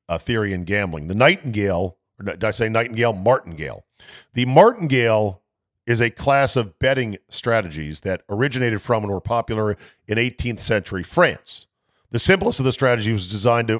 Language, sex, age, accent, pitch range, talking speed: English, male, 50-69, American, 105-135 Hz, 150 wpm